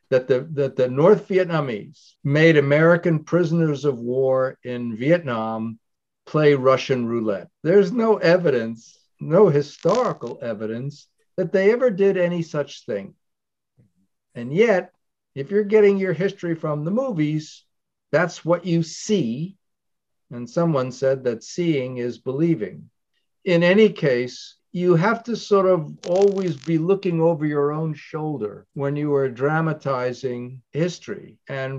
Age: 50-69